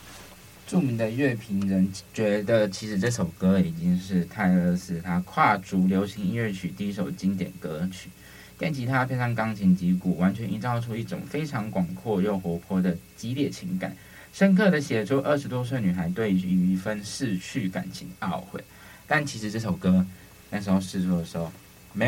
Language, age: Chinese, 20-39